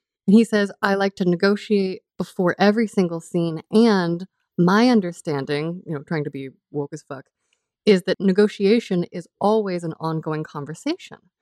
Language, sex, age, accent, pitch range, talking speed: English, female, 30-49, American, 170-215 Hz, 160 wpm